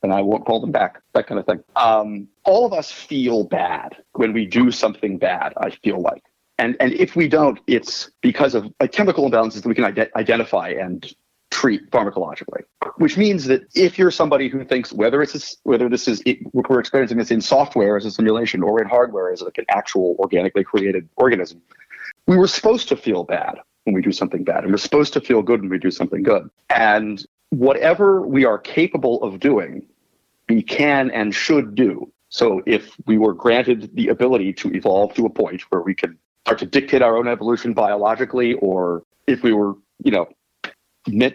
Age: 30-49